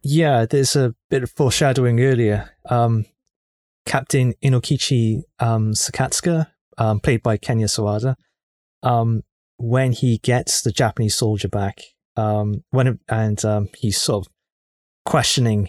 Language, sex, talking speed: English, male, 125 wpm